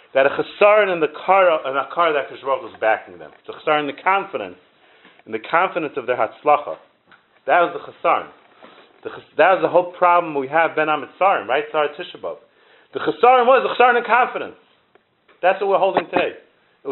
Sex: male